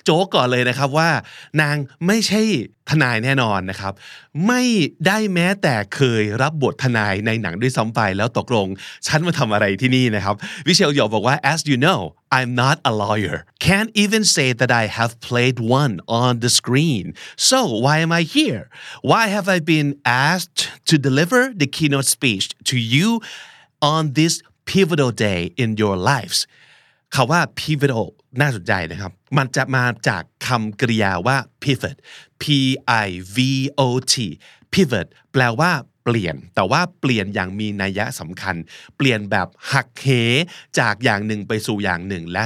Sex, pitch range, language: male, 110-150 Hz, Thai